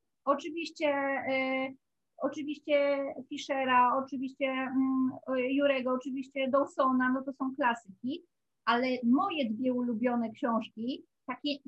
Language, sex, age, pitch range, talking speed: Polish, female, 30-49, 245-285 Hz, 100 wpm